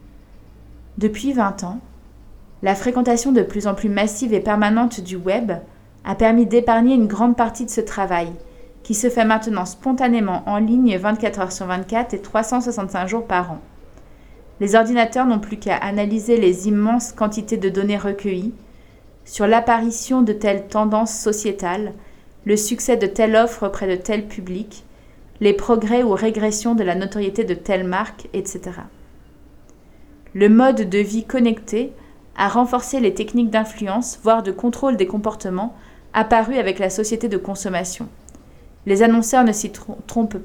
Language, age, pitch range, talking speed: French, 30-49, 200-230 Hz, 155 wpm